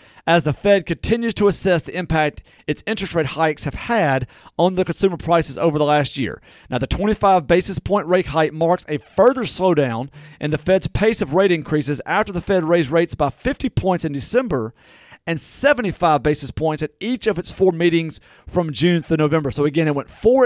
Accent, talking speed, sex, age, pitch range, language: American, 200 wpm, male, 40-59, 150-205 Hz, English